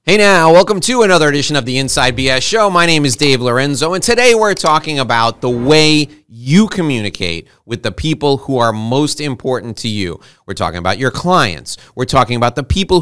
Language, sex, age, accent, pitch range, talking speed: English, male, 30-49, American, 115-155 Hz, 205 wpm